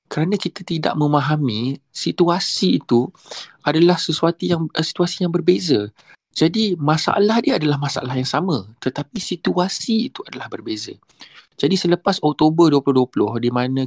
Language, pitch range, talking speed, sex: Malay, 130-170 Hz, 130 wpm, male